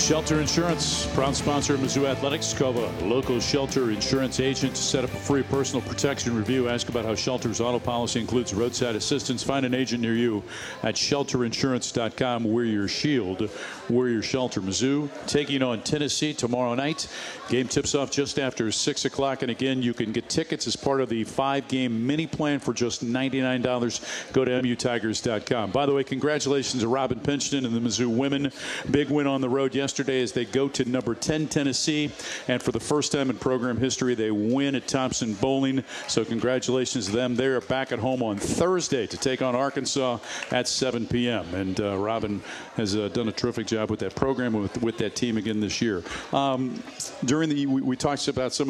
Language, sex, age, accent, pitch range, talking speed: English, male, 50-69, American, 120-140 Hz, 195 wpm